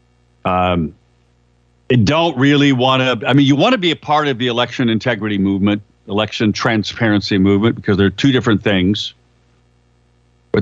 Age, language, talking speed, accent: 50-69, English, 155 wpm, American